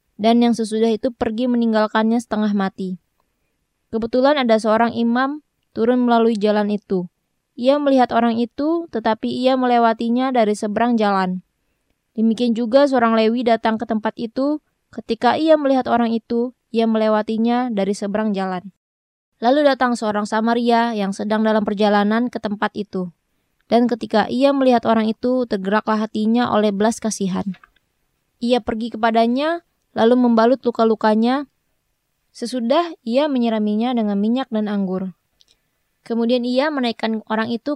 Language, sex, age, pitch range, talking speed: Indonesian, female, 20-39, 215-245 Hz, 135 wpm